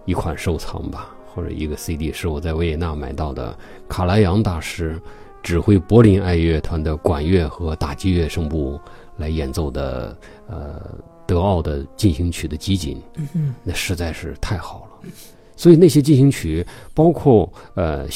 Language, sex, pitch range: Chinese, male, 80-105 Hz